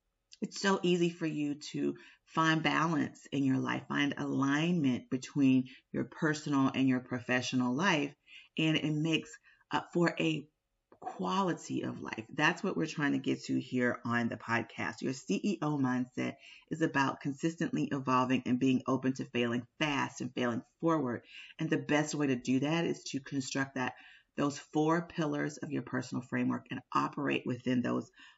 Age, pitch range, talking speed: 40-59, 130-170 Hz, 165 wpm